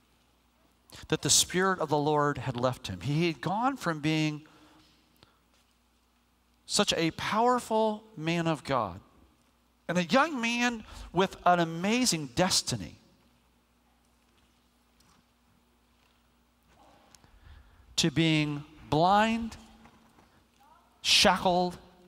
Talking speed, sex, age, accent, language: 85 wpm, male, 40-59, American, English